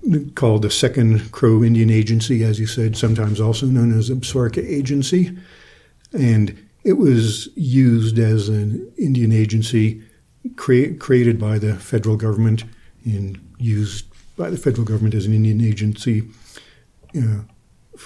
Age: 50-69